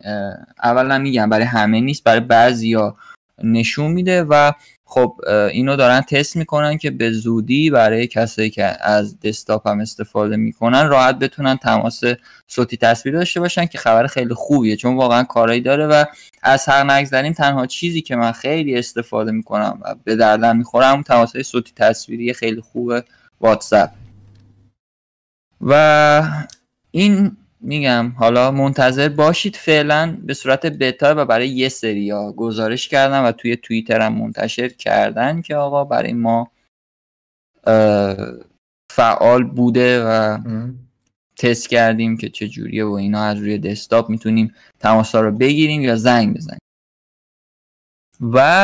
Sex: male